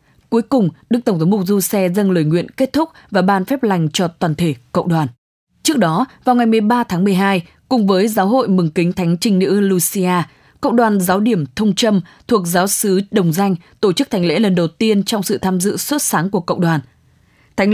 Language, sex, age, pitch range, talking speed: English, female, 20-39, 175-215 Hz, 225 wpm